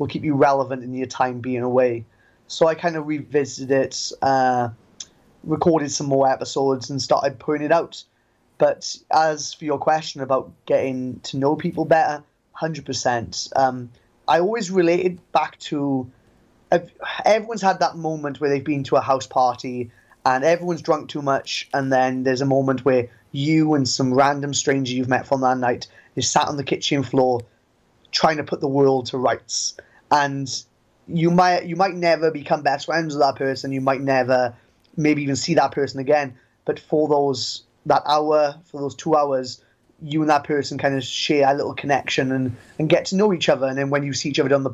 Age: 20-39